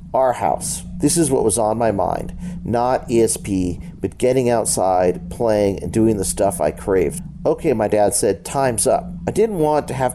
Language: English